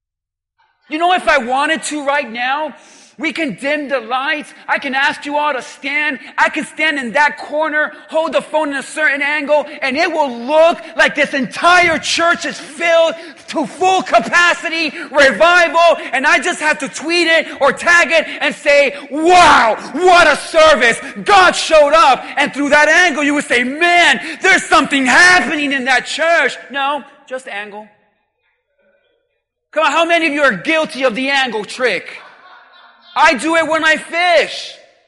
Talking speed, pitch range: 170 wpm, 275-330 Hz